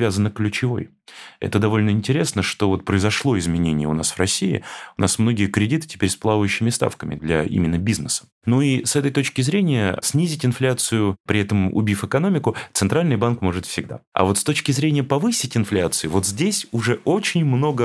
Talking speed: 175 wpm